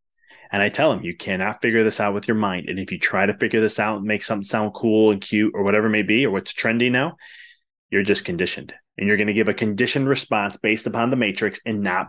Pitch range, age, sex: 105-150 Hz, 20-39, male